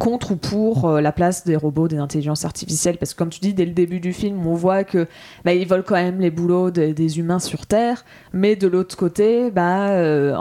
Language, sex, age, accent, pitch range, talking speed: French, female, 20-39, French, 155-190 Hz, 240 wpm